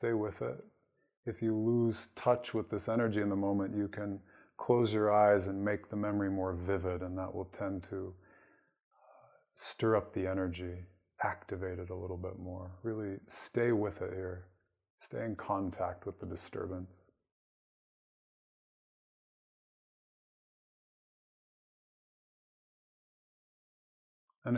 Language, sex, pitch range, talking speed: English, male, 90-110 Hz, 125 wpm